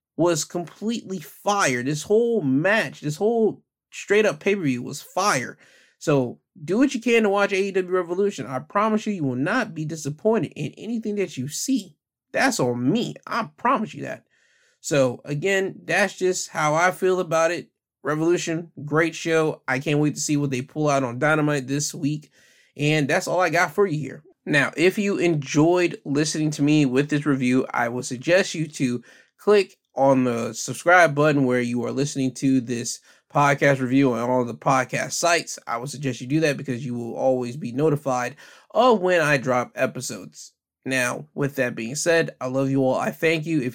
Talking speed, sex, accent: 190 wpm, male, American